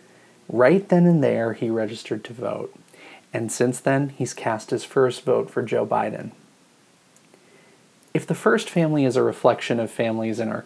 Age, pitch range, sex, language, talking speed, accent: 30-49, 115-130 Hz, male, English, 170 wpm, American